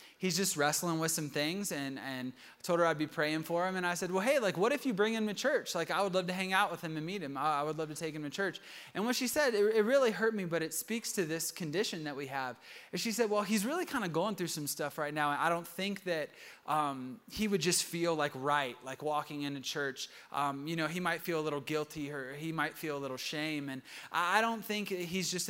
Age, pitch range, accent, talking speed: 20-39, 145-185 Hz, American, 280 wpm